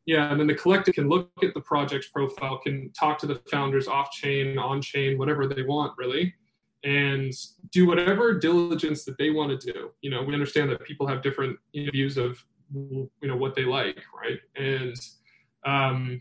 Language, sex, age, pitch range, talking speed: English, male, 20-39, 135-155 Hz, 190 wpm